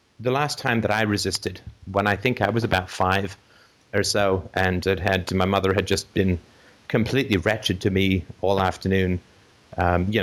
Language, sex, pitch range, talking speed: English, male, 95-110 Hz, 180 wpm